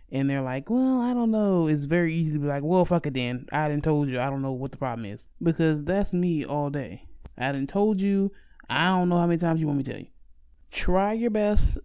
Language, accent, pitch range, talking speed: English, American, 145-195 Hz, 265 wpm